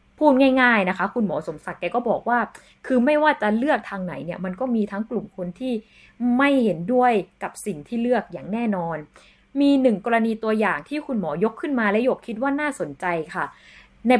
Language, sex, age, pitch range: Thai, female, 20-39, 195-270 Hz